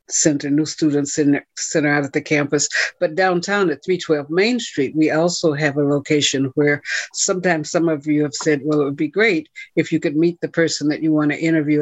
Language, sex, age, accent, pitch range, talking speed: English, female, 60-79, American, 145-165 Hz, 225 wpm